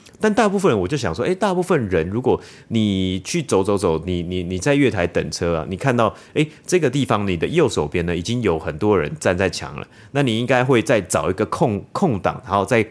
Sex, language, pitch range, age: male, Chinese, 90-135 Hz, 30-49